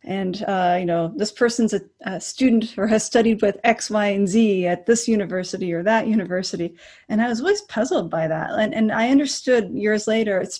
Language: English